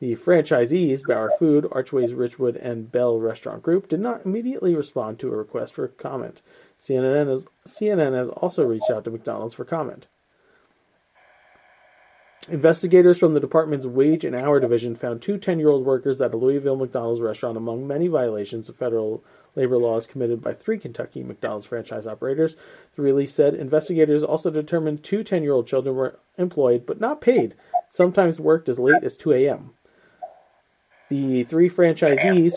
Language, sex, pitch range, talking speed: English, male, 125-165 Hz, 155 wpm